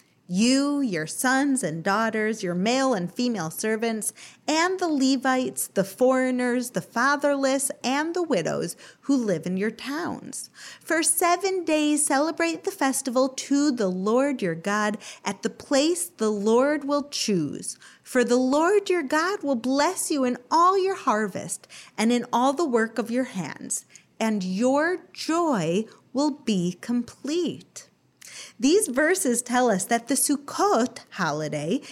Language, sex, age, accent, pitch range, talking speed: English, female, 40-59, American, 220-320 Hz, 145 wpm